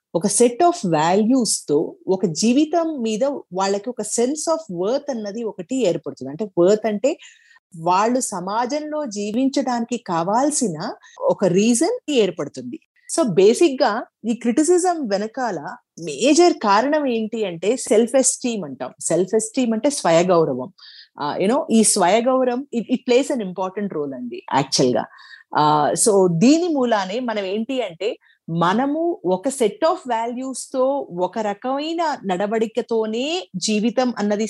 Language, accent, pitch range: Telugu, native, 200-295 Hz